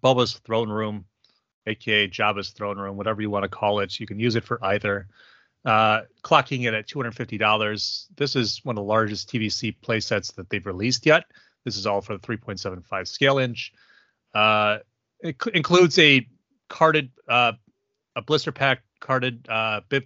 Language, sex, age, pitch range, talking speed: English, male, 30-49, 105-125 Hz, 170 wpm